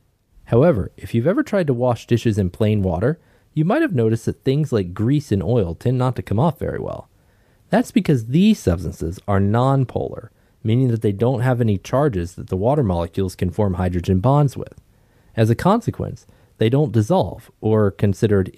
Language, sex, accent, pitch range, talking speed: English, male, American, 100-130 Hz, 190 wpm